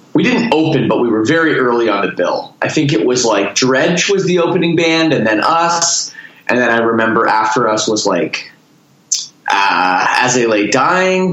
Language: English